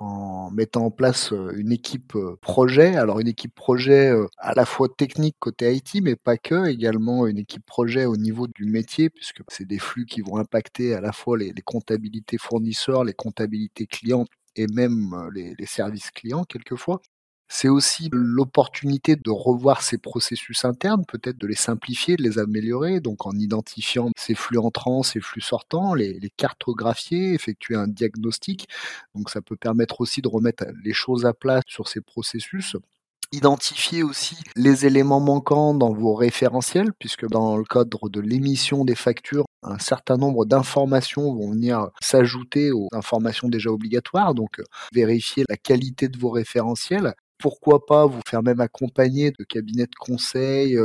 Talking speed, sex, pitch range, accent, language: 165 wpm, male, 110-135 Hz, French, French